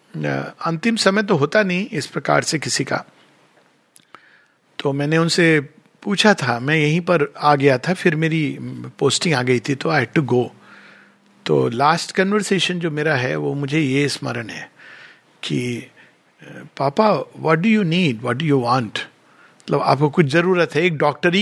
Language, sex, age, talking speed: Hindi, male, 50-69, 170 wpm